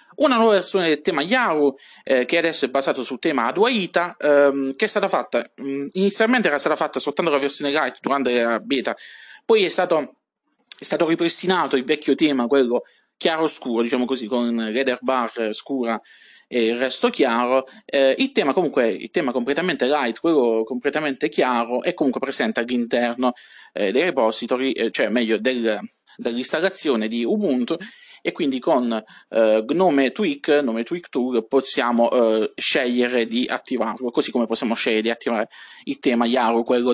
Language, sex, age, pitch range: Italian, male, 20-39, 120-185 Hz